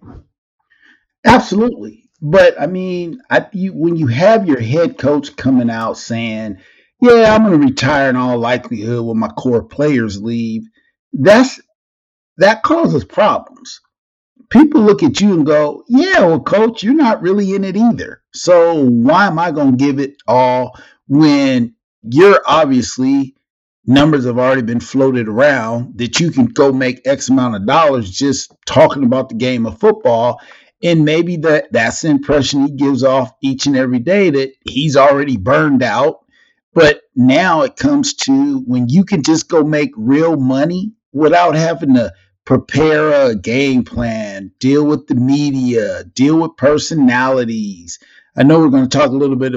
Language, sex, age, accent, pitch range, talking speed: English, male, 50-69, American, 125-175 Hz, 160 wpm